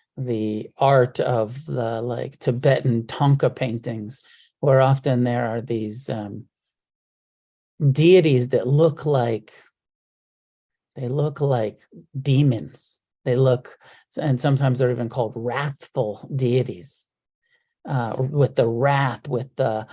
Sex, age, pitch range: male, 40-59, 125-160 Hz